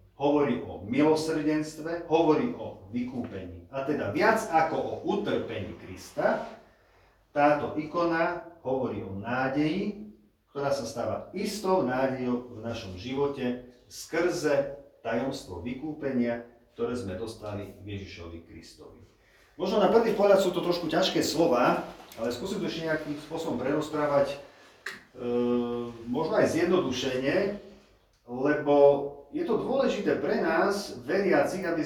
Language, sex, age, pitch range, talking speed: Slovak, male, 40-59, 120-160 Hz, 115 wpm